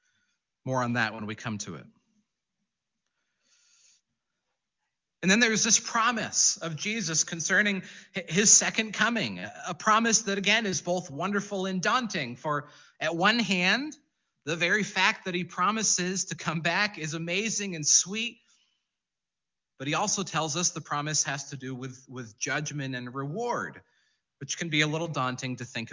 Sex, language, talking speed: male, English, 155 wpm